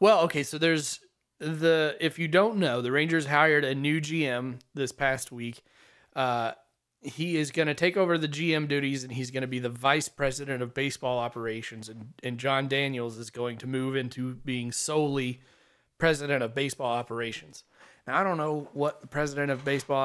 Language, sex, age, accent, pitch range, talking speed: English, male, 30-49, American, 125-160 Hz, 190 wpm